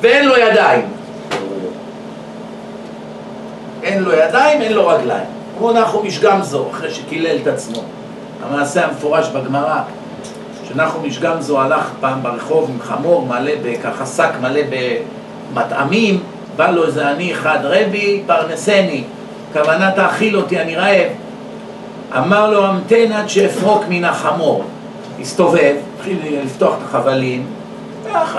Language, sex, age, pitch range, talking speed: Hebrew, male, 50-69, 155-215 Hz, 120 wpm